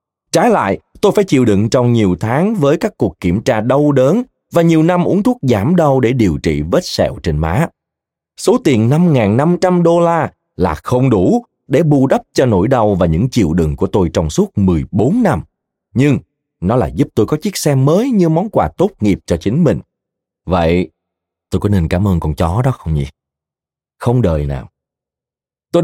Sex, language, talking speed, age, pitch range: male, Vietnamese, 200 wpm, 20-39, 95-155 Hz